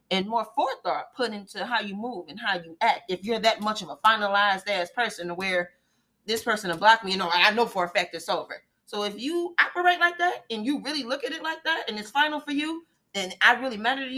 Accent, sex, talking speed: American, female, 260 wpm